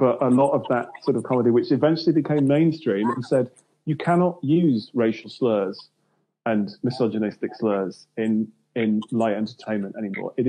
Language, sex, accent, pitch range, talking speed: English, male, British, 110-145 Hz, 160 wpm